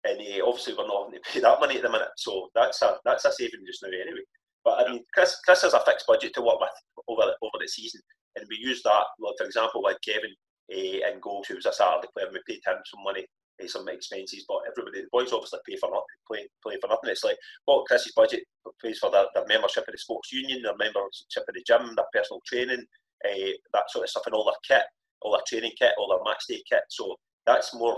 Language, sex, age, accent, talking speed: English, male, 30-49, British, 255 wpm